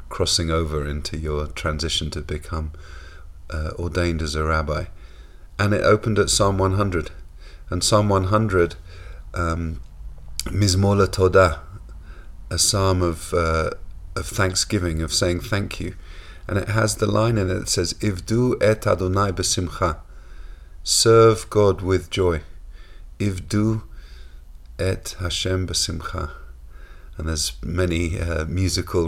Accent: British